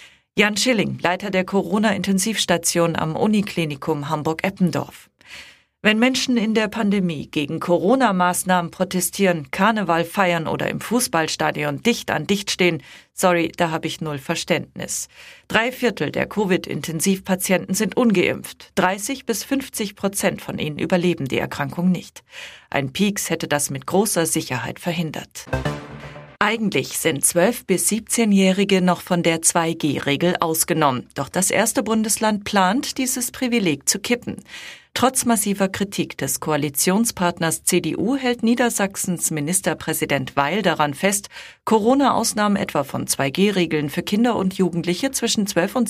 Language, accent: German, German